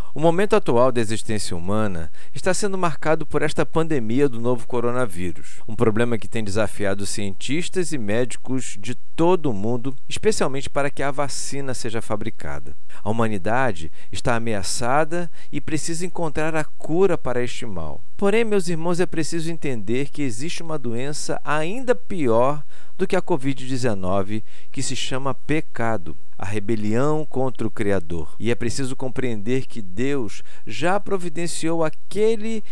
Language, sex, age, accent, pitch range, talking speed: Portuguese, male, 50-69, Brazilian, 110-160 Hz, 145 wpm